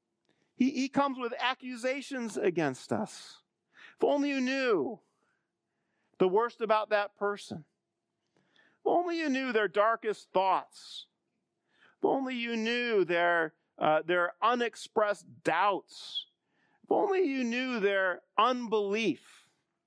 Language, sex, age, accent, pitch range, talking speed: English, male, 40-59, American, 205-275 Hz, 110 wpm